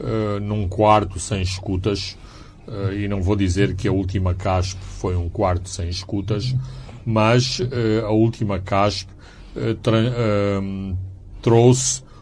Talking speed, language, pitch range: 135 wpm, Portuguese, 95-110 Hz